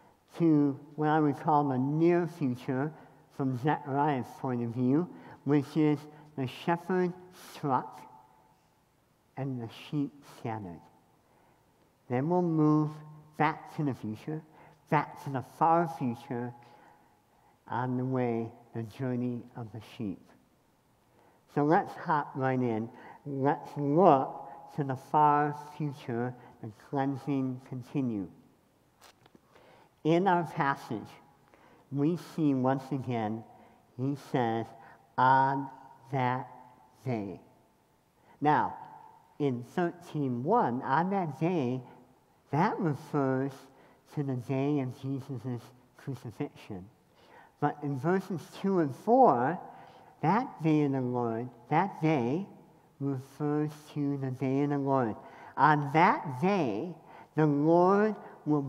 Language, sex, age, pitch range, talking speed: English, male, 60-79, 125-155 Hz, 110 wpm